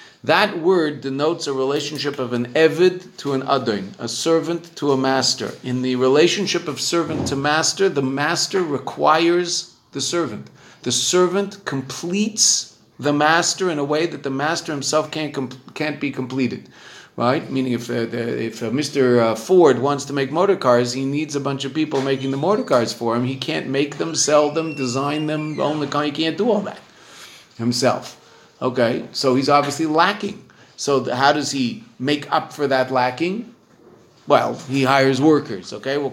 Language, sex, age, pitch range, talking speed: English, male, 50-69, 135-190 Hz, 180 wpm